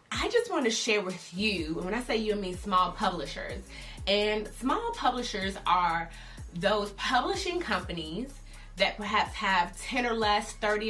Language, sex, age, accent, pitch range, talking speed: English, female, 20-39, American, 180-225 Hz, 160 wpm